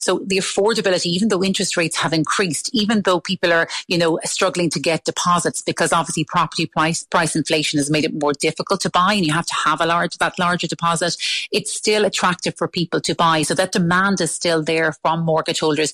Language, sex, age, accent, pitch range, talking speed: English, female, 30-49, Irish, 160-190 Hz, 220 wpm